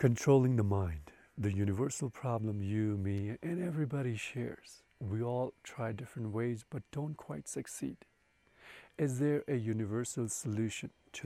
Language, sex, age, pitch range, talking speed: English, male, 40-59, 100-130 Hz, 140 wpm